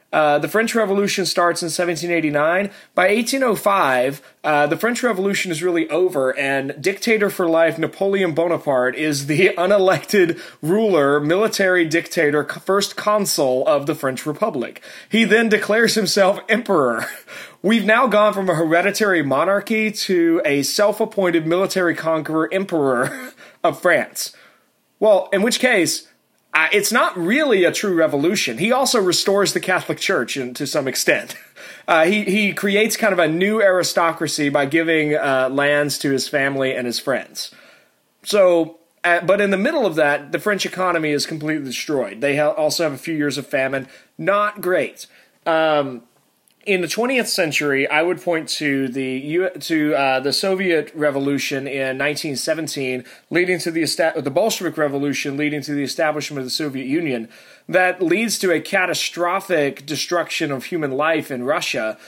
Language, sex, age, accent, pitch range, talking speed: English, male, 30-49, American, 145-195 Hz, 160 wpm